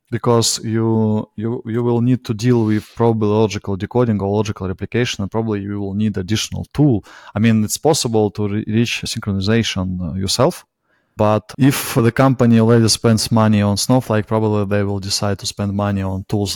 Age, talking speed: 20-39, 175 wpm